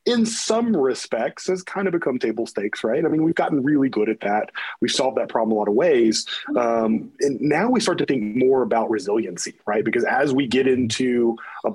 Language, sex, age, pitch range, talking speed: English, male, 30-49, 115-145 Hz, 220 wpm